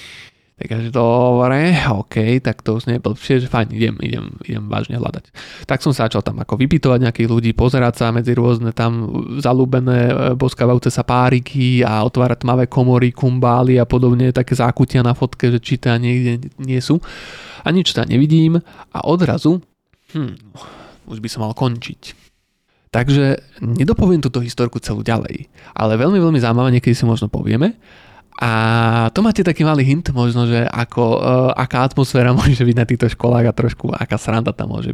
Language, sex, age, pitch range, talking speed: Slovak, male, 20-39, 115-130 Hz, 170 wpm